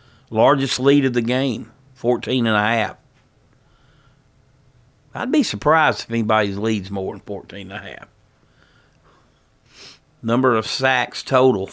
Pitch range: 100-125 Hz